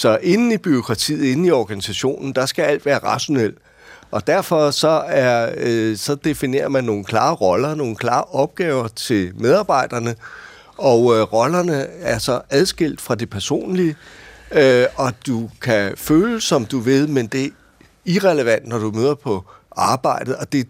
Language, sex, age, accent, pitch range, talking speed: Danish, male, 60-79, native, 130-165 Hz, 155 wpm